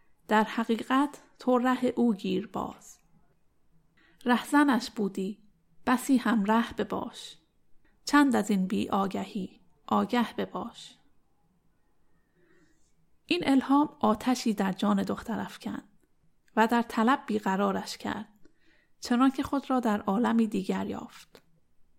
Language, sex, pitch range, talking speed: Persian, female, 205-250 Hz, 115 wpm